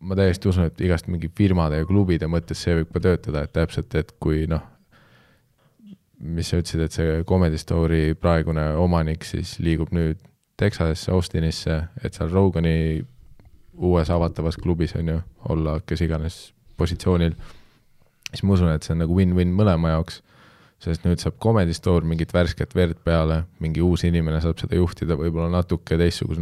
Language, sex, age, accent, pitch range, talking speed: English, male, 20-39, Finnish, 80-90 Hz, 160 wpm